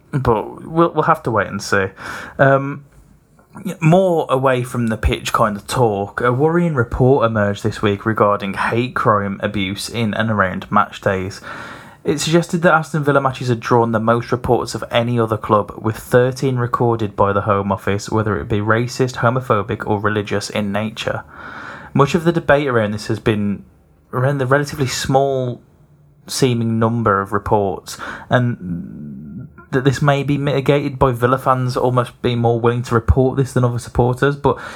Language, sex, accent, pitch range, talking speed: English, male, British, 105-135 Hz, 170 wpm